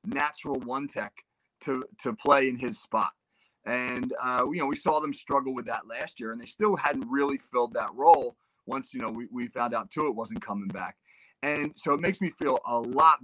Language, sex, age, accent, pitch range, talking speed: English, male, 30-49, American, 120-180 Hz, 225 wpm